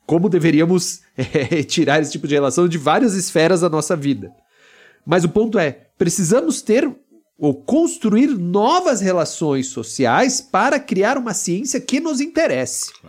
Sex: male